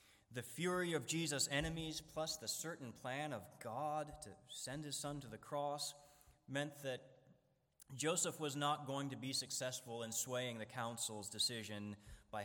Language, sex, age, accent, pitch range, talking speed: English, male, 30-49, American, 105-130 Hz, 160 wpm